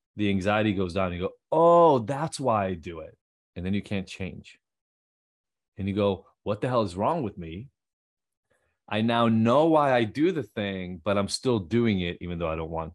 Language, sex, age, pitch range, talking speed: English, male, 30-49, 100-125 Hz, 215 wpm